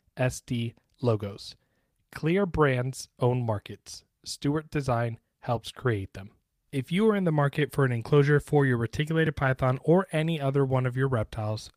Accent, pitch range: American, 115-145 Hz